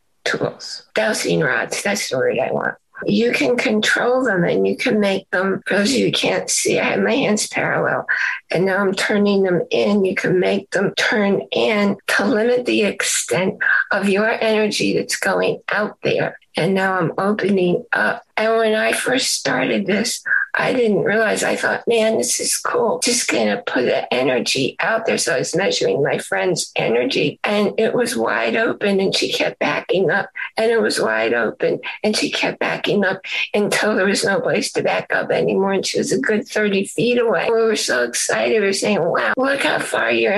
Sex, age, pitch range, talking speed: female, 50-69, 200-275 Hz, 195 wpm